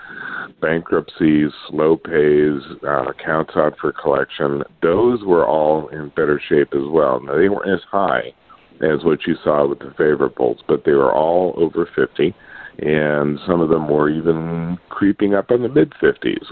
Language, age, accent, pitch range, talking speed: English, 50-69, American, 75-100 Hz, 165 wpm